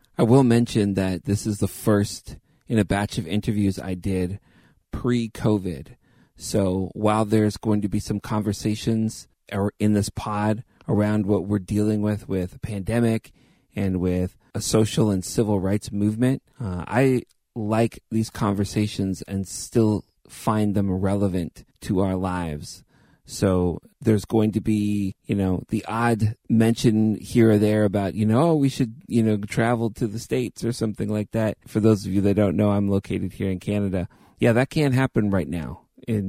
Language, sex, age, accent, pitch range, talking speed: English, male, 30-49, American, 95-110 Hz, 170 wpm